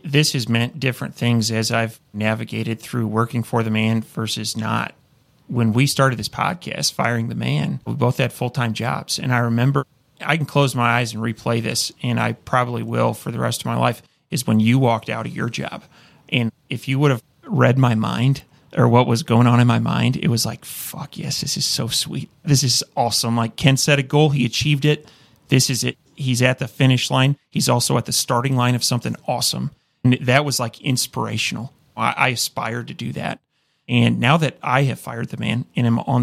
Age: 30-49